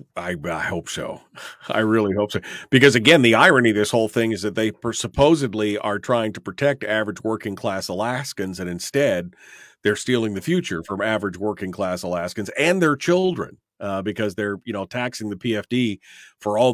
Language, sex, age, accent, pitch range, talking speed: English, male, 40-59, American, 105-145 Hz, 185 wpm